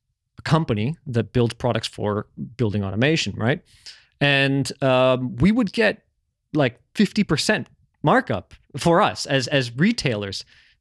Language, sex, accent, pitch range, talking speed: English, male, American, 120-165 Hz, 115 wpm